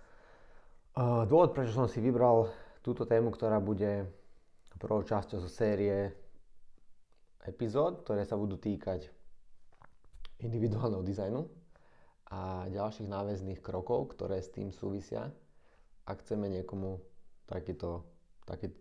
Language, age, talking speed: Slovak, 20-39, 105 wpm